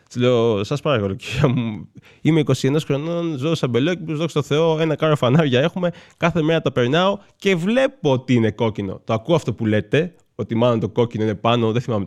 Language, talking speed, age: Greek, 190 wpm, 20-39